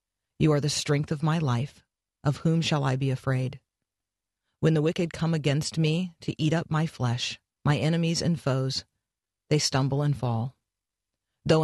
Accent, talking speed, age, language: American, 170 wpm, 40-59, English